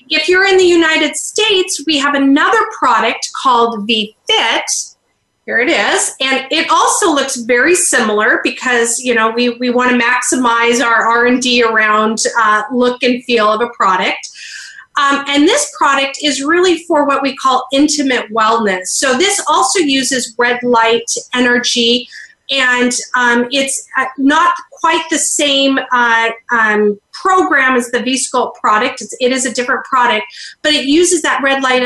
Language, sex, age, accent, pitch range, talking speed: English, female, 30-49, American, 240-295 Hz, 160 wpm